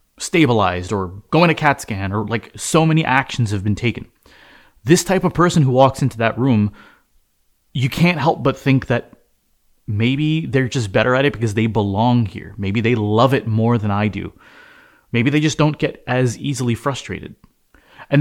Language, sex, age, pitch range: English, male, 30-49, 105-140 Hz